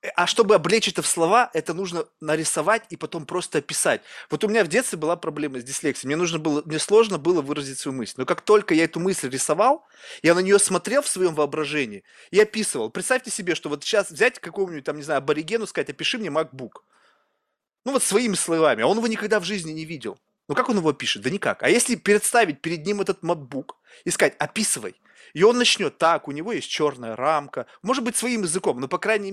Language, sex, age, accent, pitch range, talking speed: Russian, male, 20-39, native, 160-215 Hz, 220 wpm